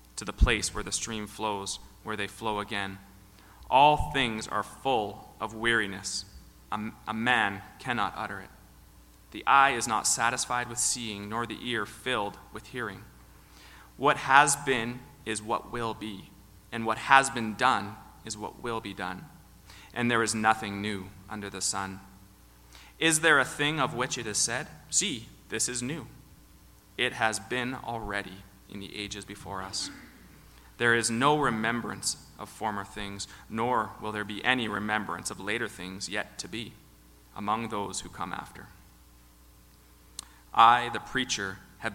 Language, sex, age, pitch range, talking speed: English, male, 30-49, 95-120 Hz, 160 wpm